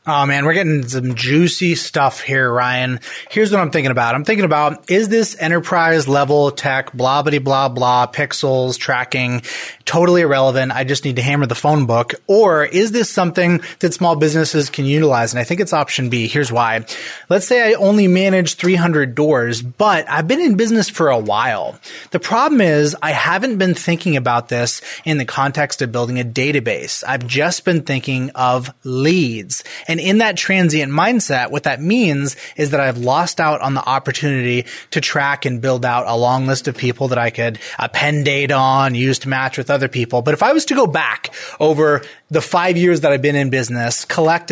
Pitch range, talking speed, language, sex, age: 130-170 Hz, 195 wpm, English, male, 30-49